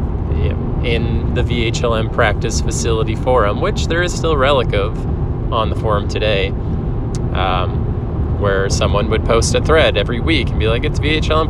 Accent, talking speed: American, 165 wpm